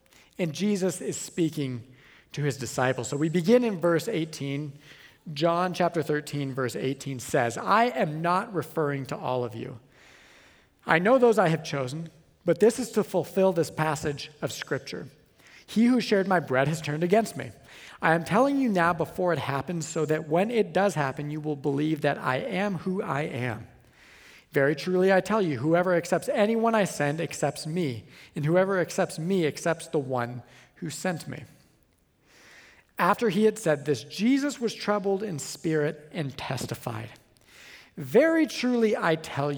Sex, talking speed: male, 170 wpm